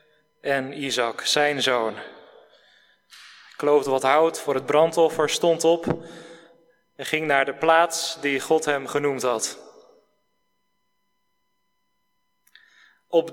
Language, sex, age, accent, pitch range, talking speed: Dutch, male, 30-49, Dutch, 155-200 Hz, 105 wpm